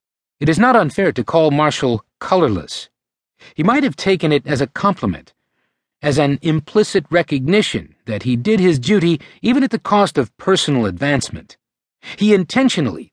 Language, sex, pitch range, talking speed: English, male, 125-180 Hz, 155 wpm